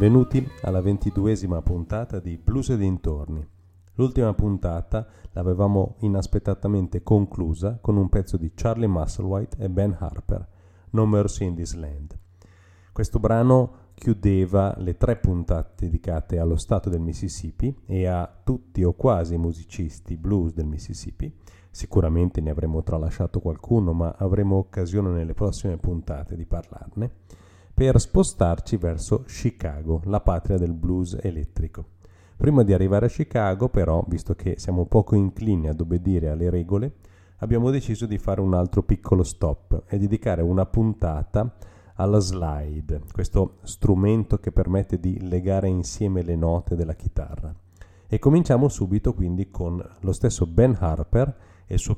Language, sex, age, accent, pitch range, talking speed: Italian, male, 40-59, native, 85-105 Hz, 140 wpm